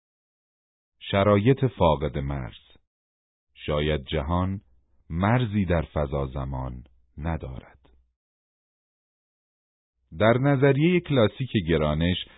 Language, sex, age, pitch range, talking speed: Persian, male, 40-59, 80-125 Hz, 70 wpm